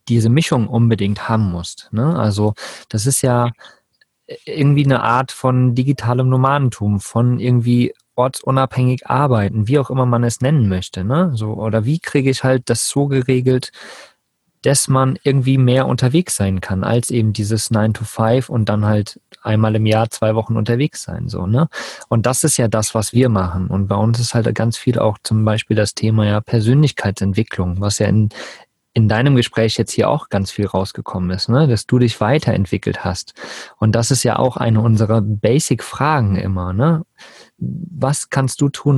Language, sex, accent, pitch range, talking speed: German, male, German, 105-130 Hz, 175 wpm